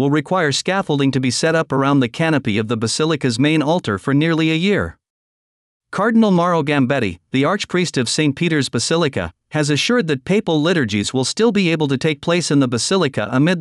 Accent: American